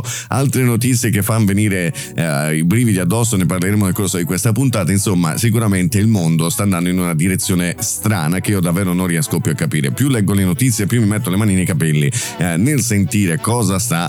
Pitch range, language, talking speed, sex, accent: 90-115 Hz, Italian, 215 wpm, male, native